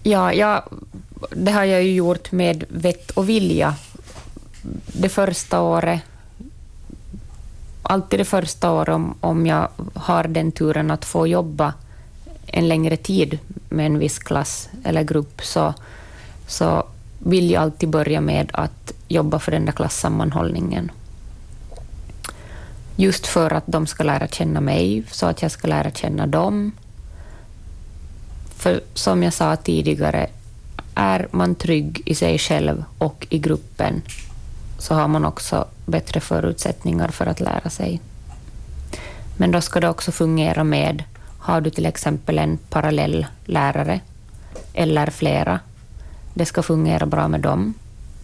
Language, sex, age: Swedish, female, 30-49